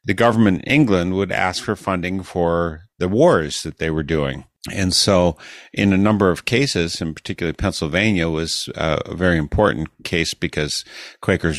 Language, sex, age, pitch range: English, male, 50-69, 80-100 Hz